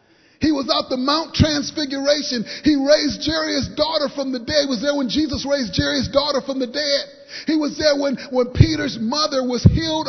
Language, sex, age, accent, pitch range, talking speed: English, male, 30-49, American, 185-285 Hz, 195 wpm